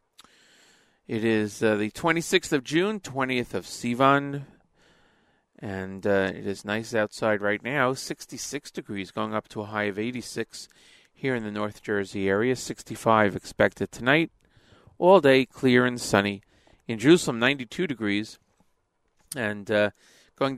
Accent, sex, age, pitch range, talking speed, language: American, male, 40-59, 105-130 Hz, 140 wpm, English